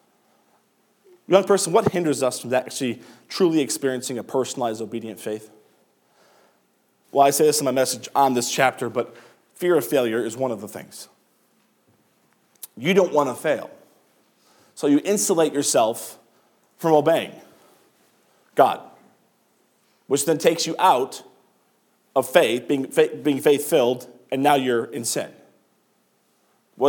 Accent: American